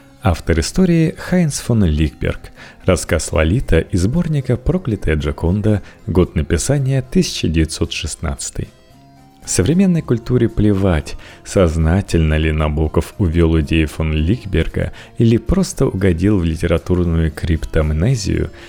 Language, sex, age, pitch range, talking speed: Russian, male, 30-49, 80-110 Hz, 105 wpm